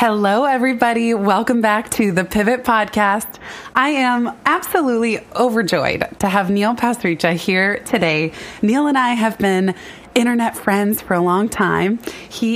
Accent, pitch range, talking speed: American, 175-225 Hz, 145 wpm